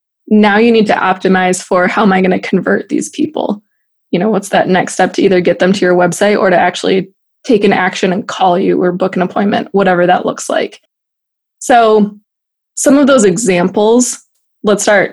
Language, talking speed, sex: English, 200 wpm, female